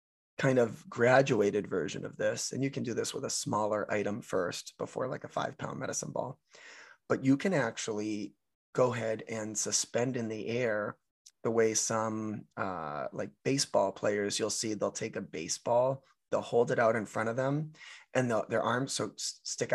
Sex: male